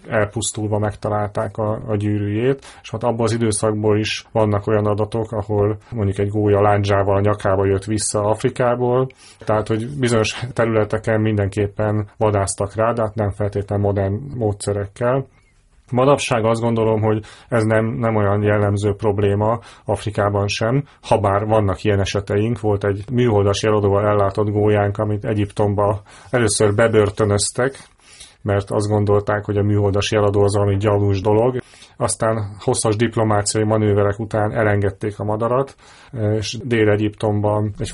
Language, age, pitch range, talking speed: Hungarian, 30-49, 105-115 Hz, 130 wpm